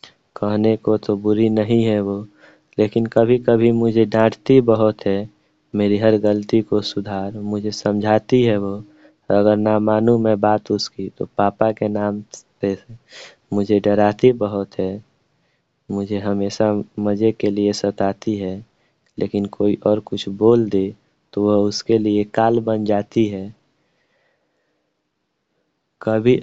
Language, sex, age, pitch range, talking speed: Hindi, male, 20-39, 105-115 Hz, 135 wpm